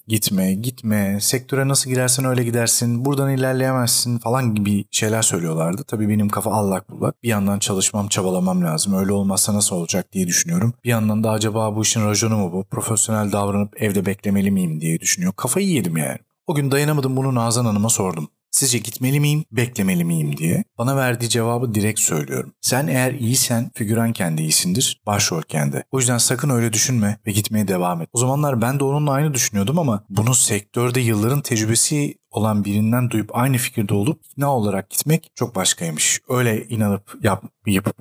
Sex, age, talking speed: male, 30-49, 175 wpm